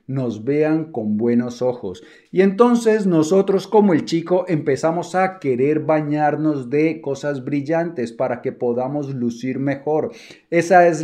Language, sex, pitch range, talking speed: Spanish, male, 125-155 Hz, 135 wpm